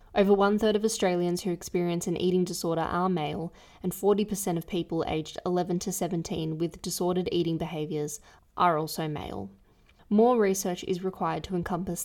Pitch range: 165-190 Hz